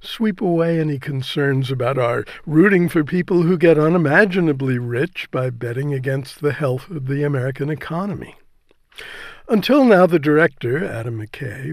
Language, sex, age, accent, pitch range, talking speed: English, male, 60-79, American, 130-165 Hz, 145 wpm